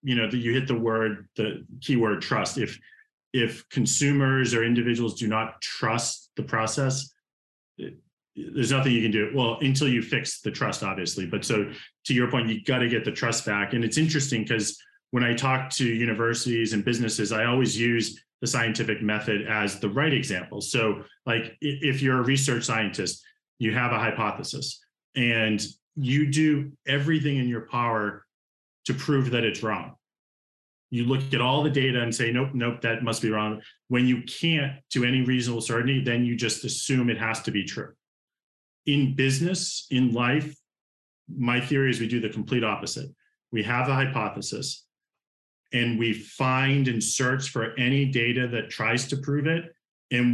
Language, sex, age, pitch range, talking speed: English, male, 30-49, 115-135 Hz, 180 wpm